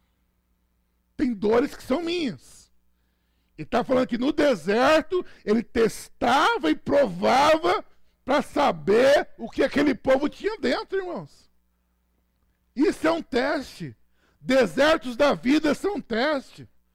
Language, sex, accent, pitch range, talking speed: Portuguese, male, Brazilian, 185-270 Hz, 120 wpm